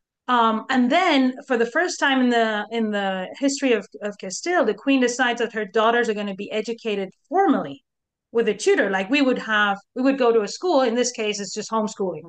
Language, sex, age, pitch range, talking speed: English, female, 30-49, 215-270 Hz, 225 wpm